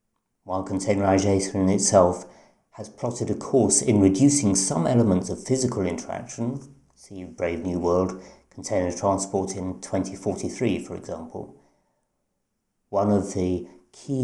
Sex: male